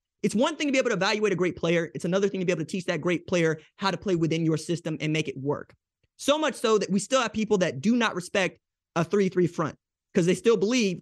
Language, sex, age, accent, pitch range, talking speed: English, male, 20-39, American, 165-220 Hz, 280 wpm